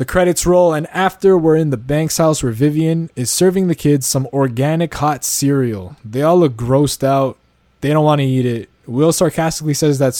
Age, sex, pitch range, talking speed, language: 20-39, male, 125-160 Hz, 205 wpm, English